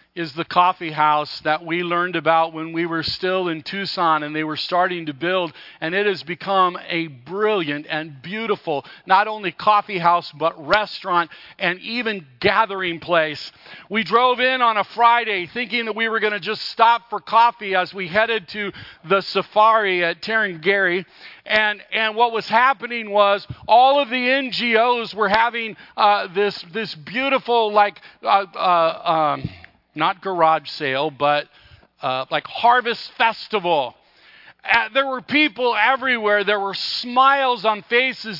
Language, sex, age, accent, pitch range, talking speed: English, male, 50-69, American, 175-230 Hz, 155 wpm